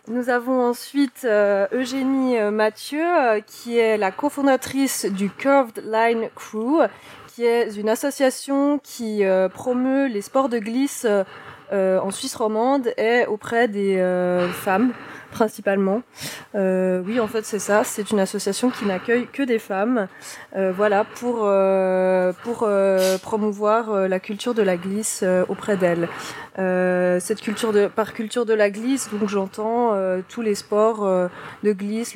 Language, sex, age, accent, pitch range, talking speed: French, female, 20-39, French, 190-235 Hz, 140 wpm